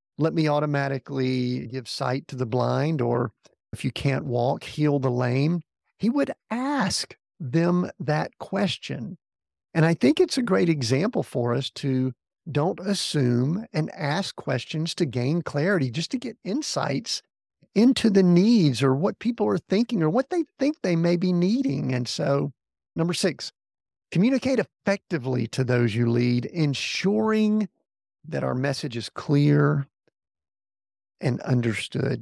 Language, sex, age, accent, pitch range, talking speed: English, male, 50-69, American, 130-175 Hz, 145 wpm